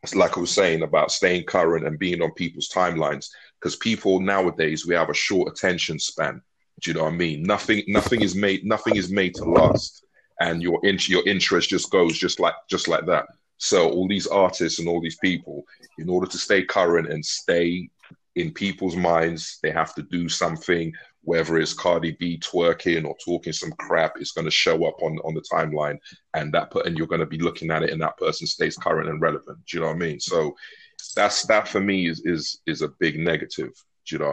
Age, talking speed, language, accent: 30-49, 225 wpm, English, British